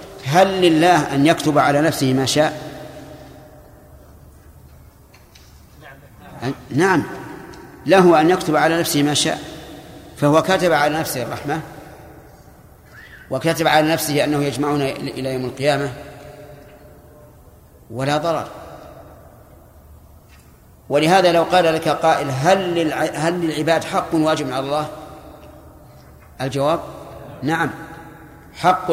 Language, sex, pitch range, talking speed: Arabic, male, 140-160 Hz, 95 wpm